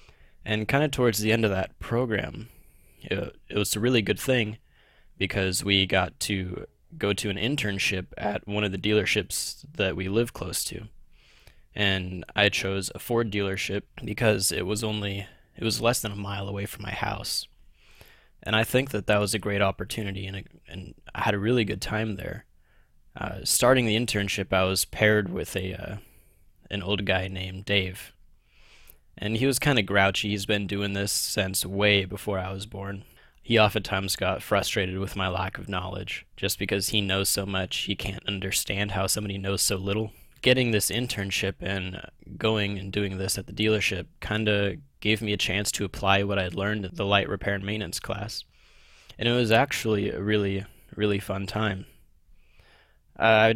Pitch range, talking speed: 95-105 Hz, 185 wpm